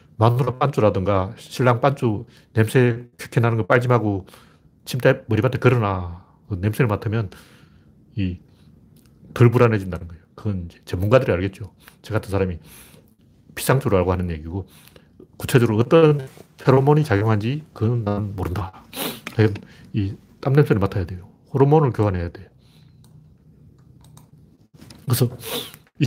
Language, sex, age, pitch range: Korean, male, 40-59, 100-145 Hz